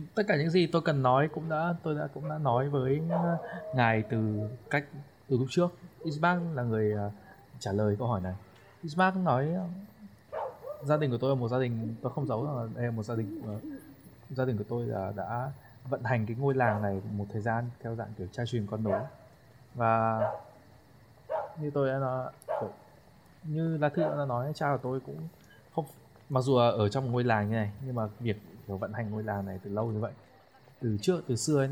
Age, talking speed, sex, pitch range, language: 20-39, 210 wpm, male, 110-140 Hz, Vietnamese